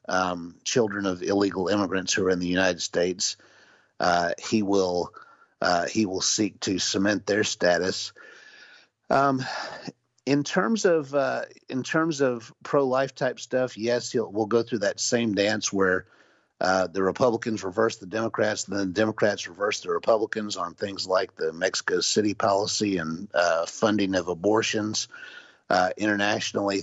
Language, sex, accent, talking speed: English, male, American, 155 wpm